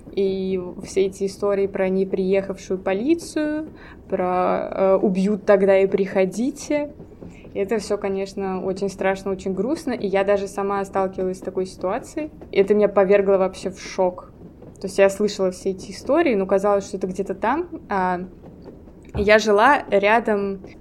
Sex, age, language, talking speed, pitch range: female, 20-39, Russian, 155 wpm, 195-215 Hz